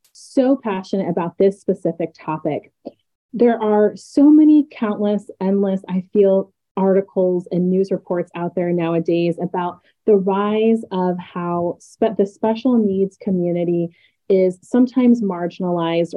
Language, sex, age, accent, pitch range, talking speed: English, female, 30-49, American, 180-225 Hz, 125 wpm